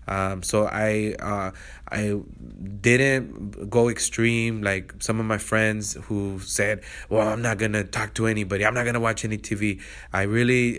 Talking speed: 180 wpm